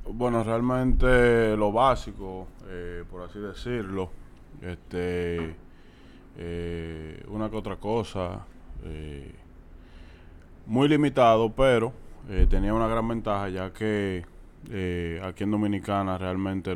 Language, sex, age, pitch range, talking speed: Spanish, male, 20-39, 85-100 Hz, 105 wpm